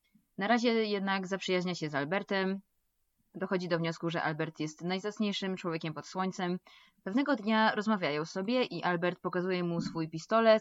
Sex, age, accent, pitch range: female, 20-39, native, 160-195 Hz